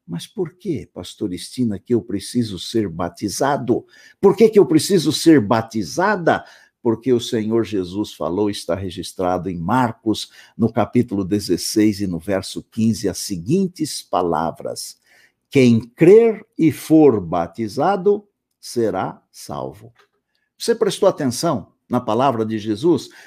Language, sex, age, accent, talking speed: Portuguese, male, 60-79, Brazilian, 130 wpm